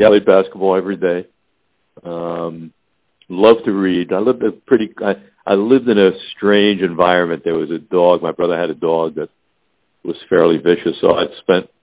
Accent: American